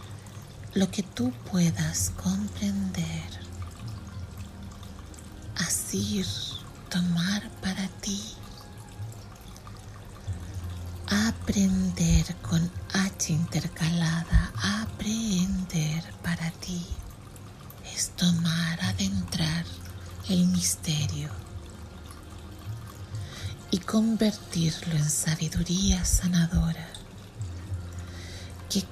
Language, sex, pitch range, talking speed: Spanish, female, 95-145 Hz, 55 wpm